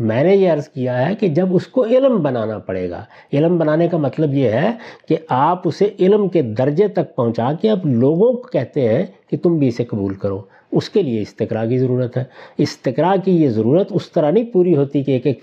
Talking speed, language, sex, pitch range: 230 wpm, Urdu, male, 130-180 Hz